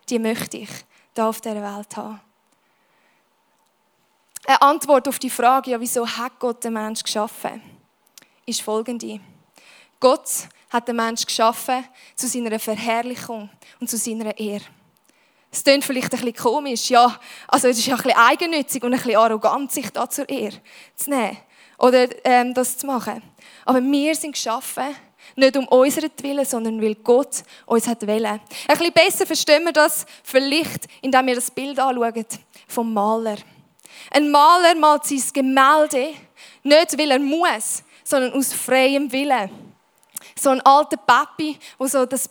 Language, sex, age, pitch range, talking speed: English, female, 20-39, 230-280 Hz, 155 wpm